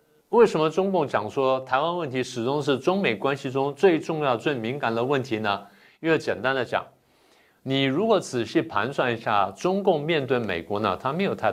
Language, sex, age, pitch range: Chinese, male, 50-69, 115-160 Hz